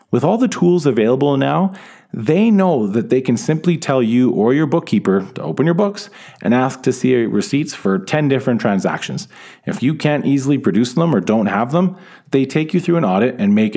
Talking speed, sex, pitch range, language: 210 wpm, male, 110-185 Hz, English